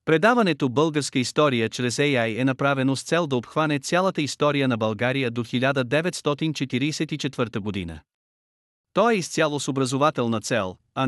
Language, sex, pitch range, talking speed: Bulgarian, male, 120-150 Hz, 135 wpm